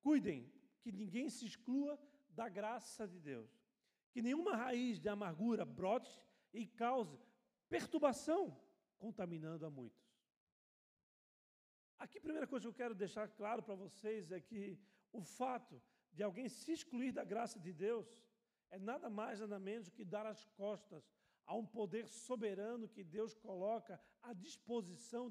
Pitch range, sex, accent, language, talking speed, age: 195-255 Hz, male, Brazilian, Portuguese, 145 wpm, 50-69